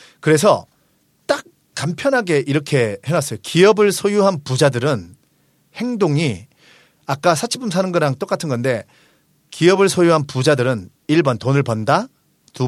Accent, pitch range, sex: native, 125-165 Hz, male